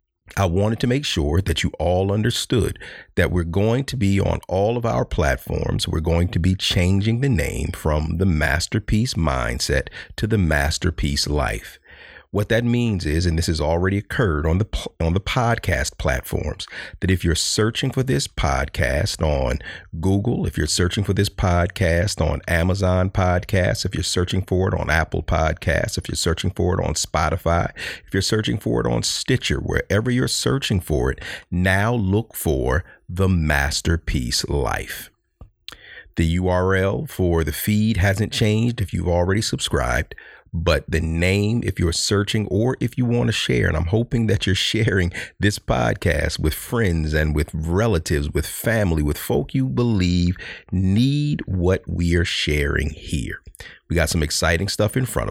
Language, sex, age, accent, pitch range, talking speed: English, male, 40-59, American, 80-110 Hz, 170 wpm